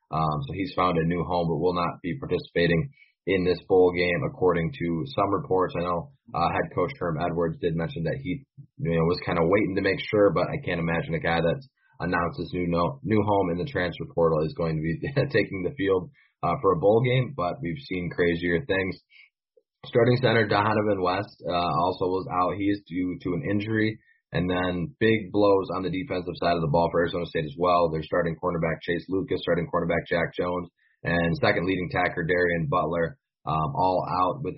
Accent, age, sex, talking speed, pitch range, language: American, 20-39, male, 210 wpm, 85-95 Hz, English